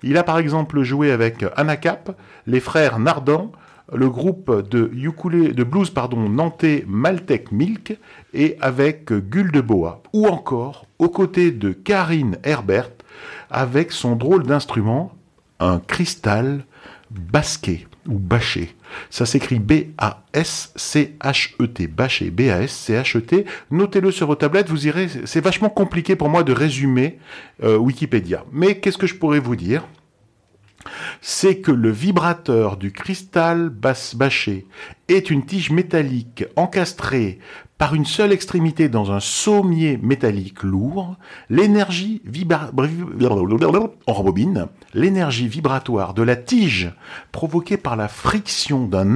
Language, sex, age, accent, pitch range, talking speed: French, male, 50-69, French, 115-170 Hz, 120 wpm